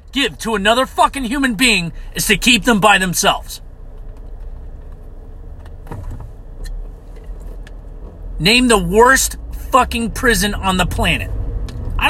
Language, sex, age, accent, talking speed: English, male, 40-59, American, 105 wpm